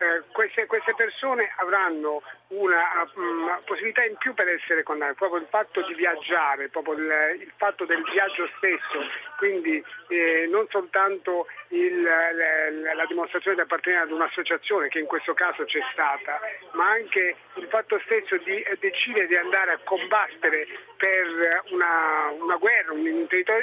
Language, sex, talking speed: Italian, male, 150 wpm